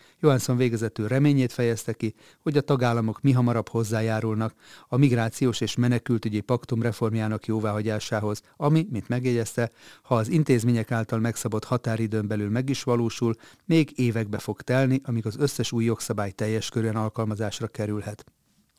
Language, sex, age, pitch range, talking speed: Hungarian, male, 30-49, 110-125 Hz, 140 wpm